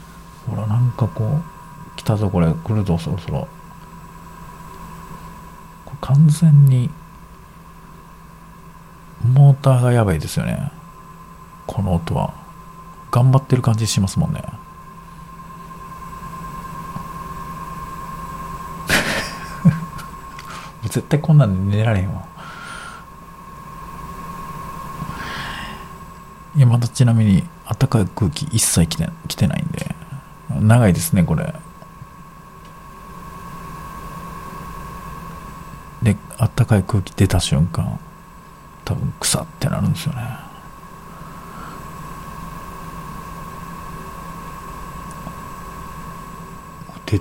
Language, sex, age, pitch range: Japanese, male, 50-69, 135-180 Hz